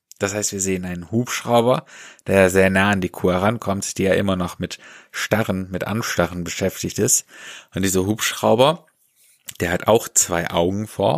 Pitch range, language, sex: 90-105 Hz, German, male